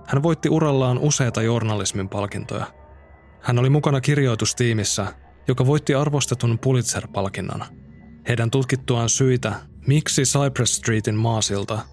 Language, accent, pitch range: Finnish, native, 105-135 Hz